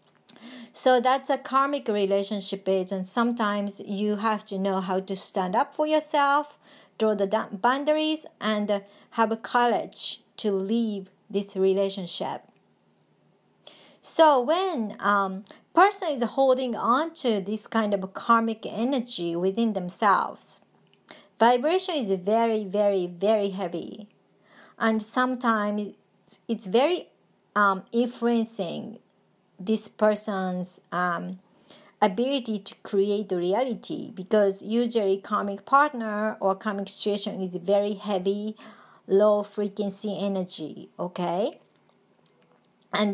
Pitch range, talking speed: 195-235 Hz, 110 wpm